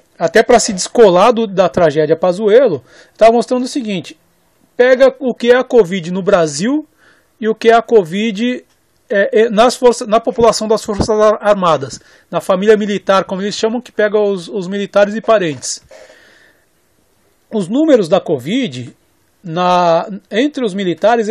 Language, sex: Portuguese, male